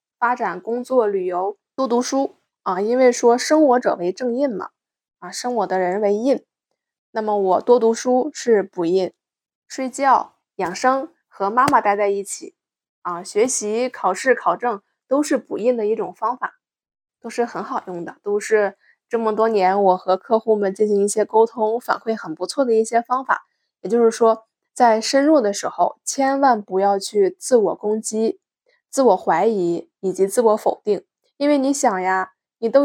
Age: 20-39